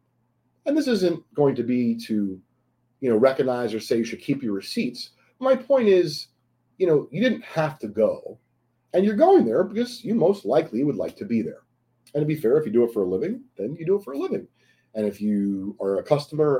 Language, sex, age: English, male, 30-49